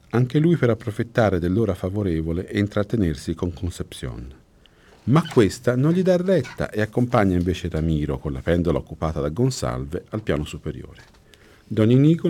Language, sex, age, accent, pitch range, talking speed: Italian, male, 50-69, native, 85-120 Hz, 150 wpm